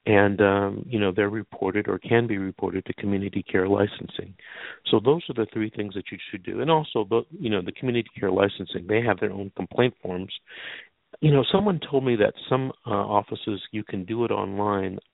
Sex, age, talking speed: male, 50-69, 205 wpm